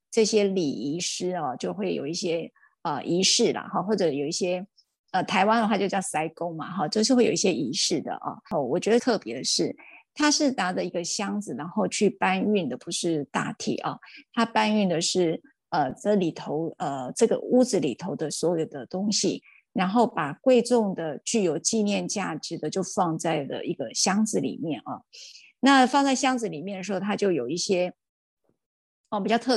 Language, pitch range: Chinese, 170-225 Hz